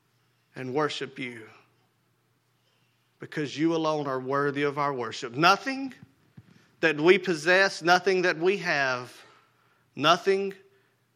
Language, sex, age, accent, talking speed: English, male, 40-59, American, 110 wpm